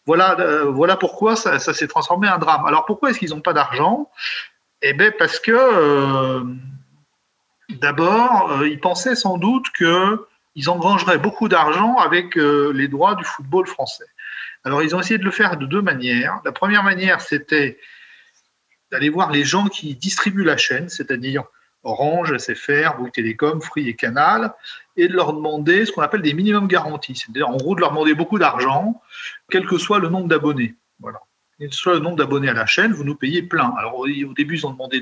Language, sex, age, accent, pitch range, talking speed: French, male, 40-59, French, 145-200 Hz, 190 wpm